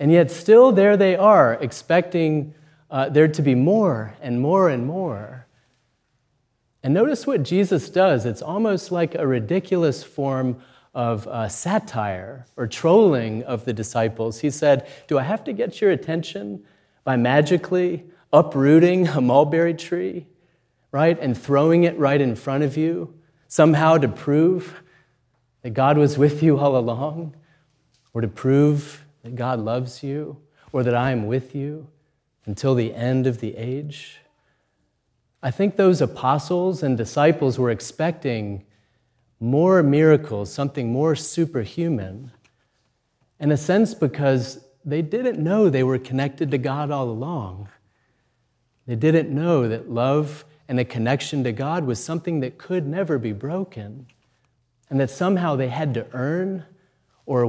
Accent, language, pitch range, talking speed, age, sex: American, English, 125-165 Hz, 145 wpm, 30-49, male